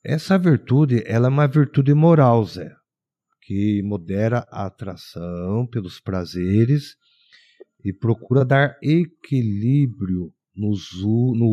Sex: male